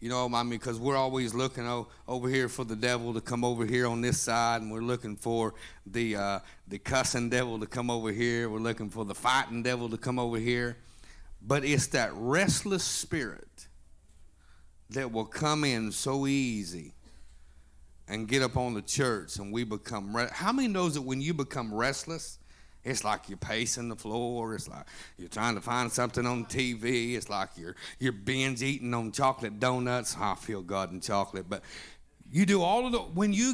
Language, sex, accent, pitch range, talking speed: English, male, American, 110-155 Hz, 195 wpm